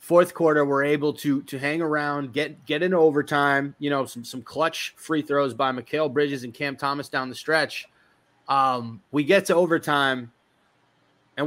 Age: 30-49